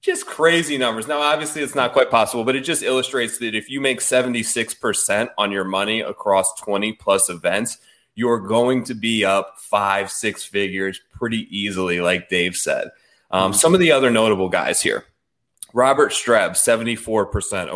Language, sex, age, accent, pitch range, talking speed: English, male, 20-39, American, 100-135 Hz, 160 wpm